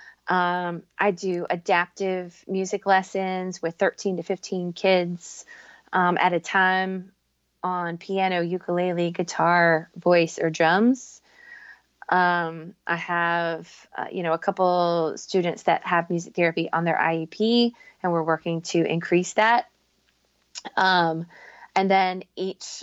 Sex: female